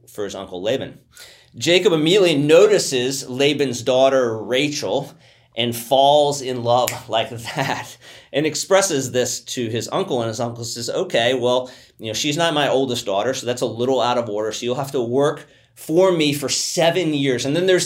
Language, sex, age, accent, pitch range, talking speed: English, male, 30-49, American, 120-150 Hz, 185 wpm